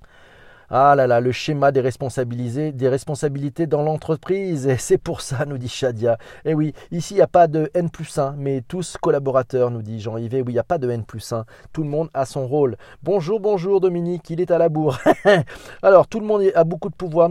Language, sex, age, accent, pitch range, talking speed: French, male, 40-59, French, 120-160 Hz, 230 wpm